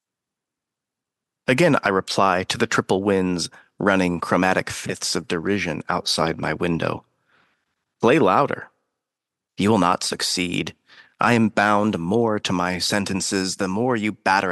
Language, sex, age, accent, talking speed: English, male, 40-59, American, 130 wpm